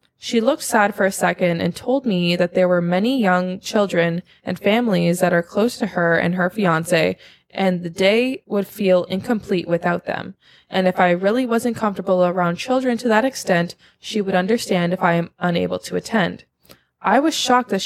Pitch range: 180-235 Hz